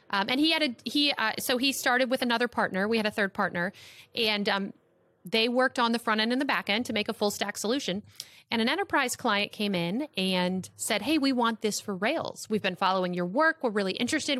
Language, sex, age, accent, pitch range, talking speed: English, female, 30-49, American, 200-280 Hz, 240 wpm